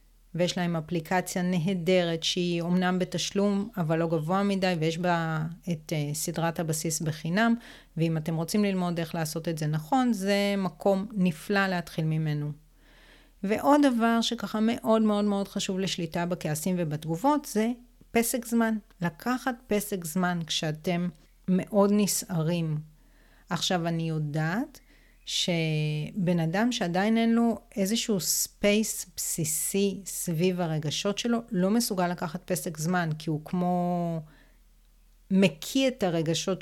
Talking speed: 125 wpm